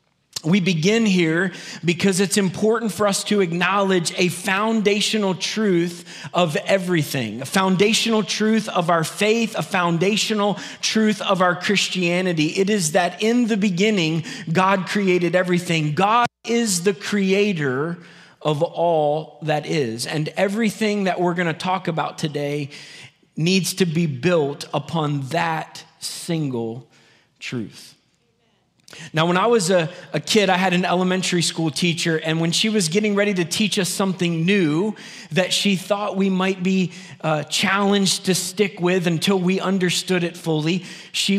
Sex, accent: male, American